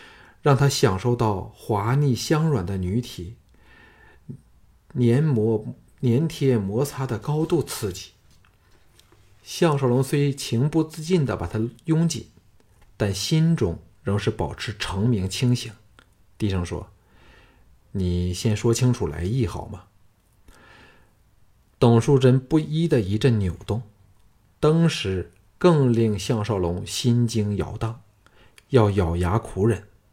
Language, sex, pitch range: Chinese, male, 95-125 Hz